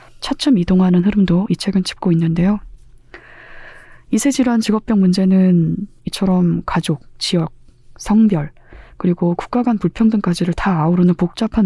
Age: 20-39